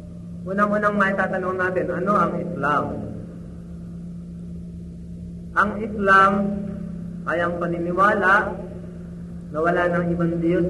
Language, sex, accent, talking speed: Filipino, male, native, 95 wpm